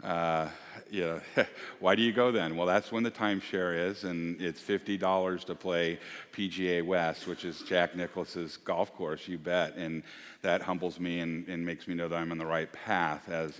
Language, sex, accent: English, male, American